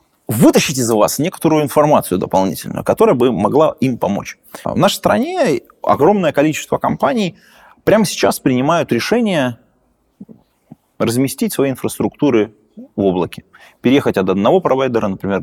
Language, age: Russian, 30-49